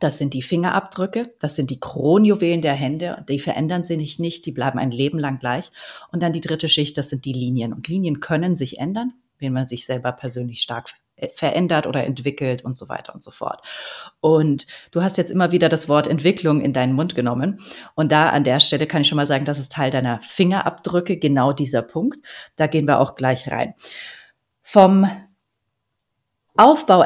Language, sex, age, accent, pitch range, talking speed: German, female, 30-49, German, 140-175 Hz, 195 wpm